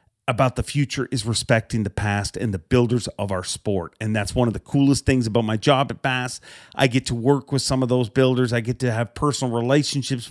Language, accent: English, American